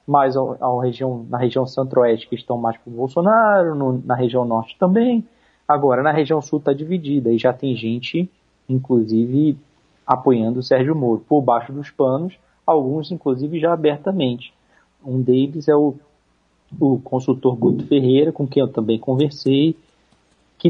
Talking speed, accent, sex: 155 wpm, Brazilian, male